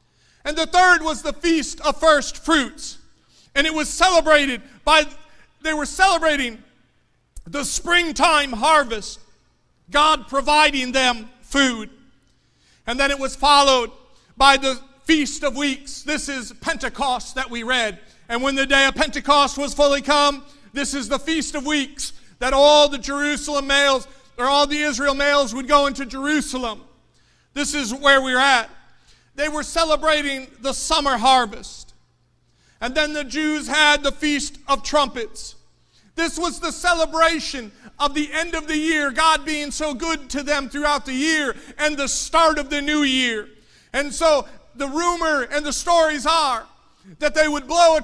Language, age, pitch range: English, 40-59, 265-310 Hz